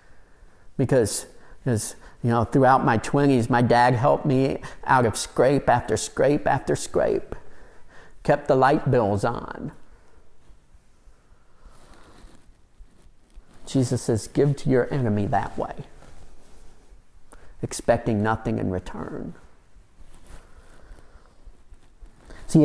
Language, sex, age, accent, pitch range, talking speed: English, male, 50-69, American, 115-140 Hz, 95 wpm